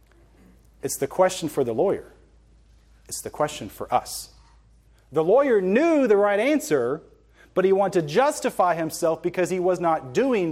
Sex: male